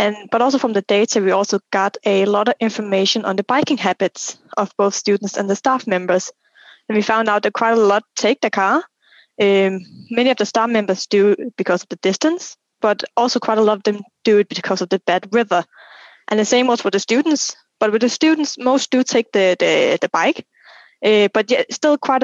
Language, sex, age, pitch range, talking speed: English, female, 20-39, 200-245 Hz, 225 wpm